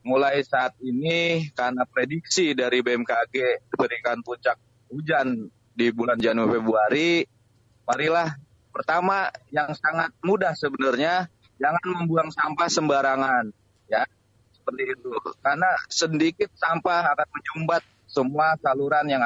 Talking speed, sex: 110 wpm, male